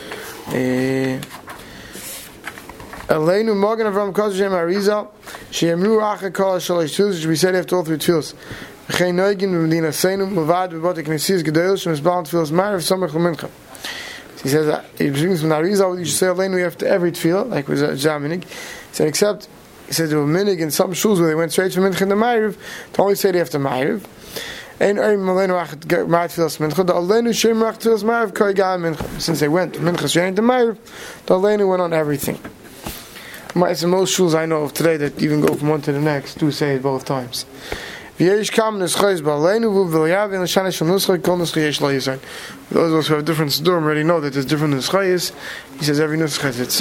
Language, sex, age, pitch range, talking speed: English, male, 20-39, 155-195 Hz, 105 wpm